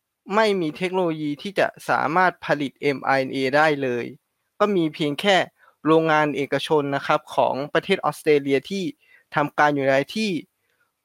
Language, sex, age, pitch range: Thai, male, 20-39, 140-175 Hz